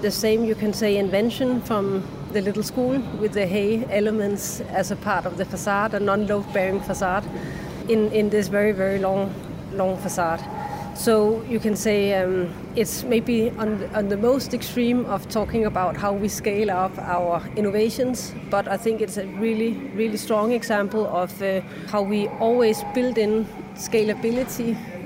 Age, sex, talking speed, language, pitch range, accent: 30-49, female, 170 wpm, English, 190-220 Hz, Danish